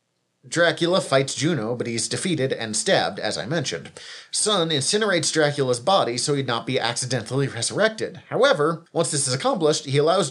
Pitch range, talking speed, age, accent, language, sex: 125-165 Hz, 165 wpm, 30-49, American, English, male